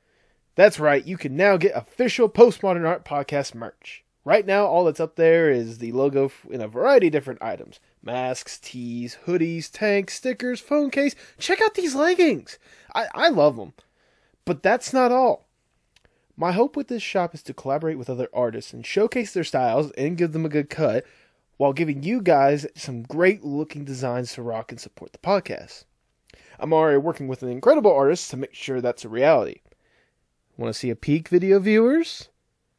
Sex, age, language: male, 20-39, English